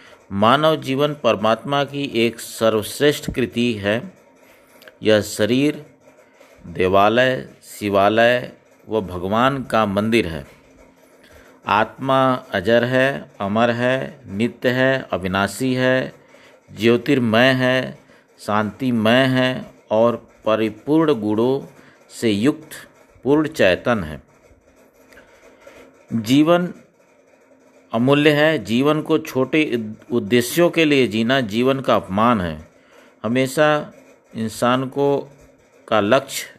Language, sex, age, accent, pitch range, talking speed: Hindi, male, 50-69, native, 110-140 Hz, 95 wpm